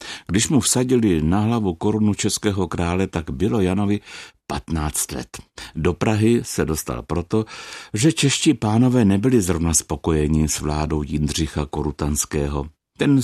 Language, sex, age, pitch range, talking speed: Czech, male, 60-79, 80-105 Hz, 130 wpm